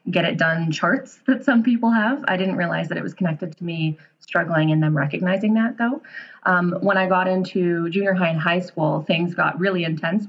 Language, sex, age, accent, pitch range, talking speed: English, female, 20-39, American, 170-210 Hz, 215 wpm